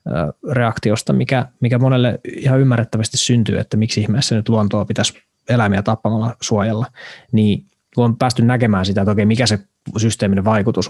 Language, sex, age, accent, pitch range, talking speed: Finnish, male, 20-39, native, 105-115 Hz, 145 wpm